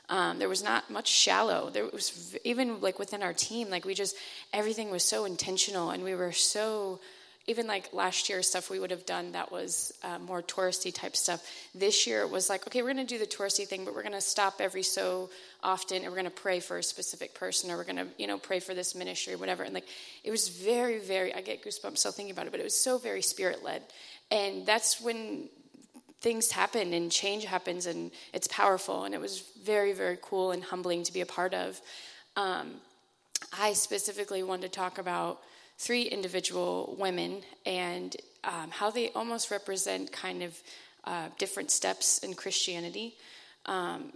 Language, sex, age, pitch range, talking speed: English, female, 20-39, 180-215 Hz, 200 wpm